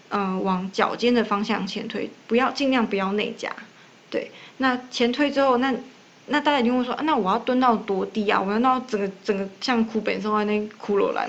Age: 20-39